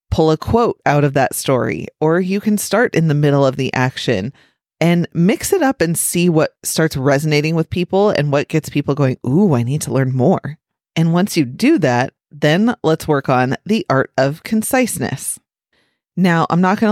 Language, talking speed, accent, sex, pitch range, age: English, 200 wpm, American, female, 135-165 Hz, 30-49